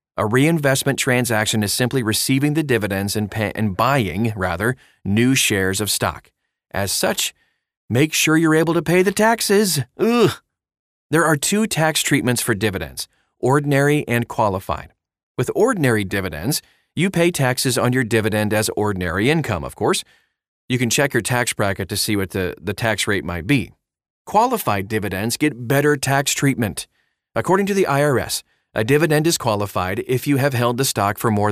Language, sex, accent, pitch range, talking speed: English, male, American, 105-140 Hz, 165 wpm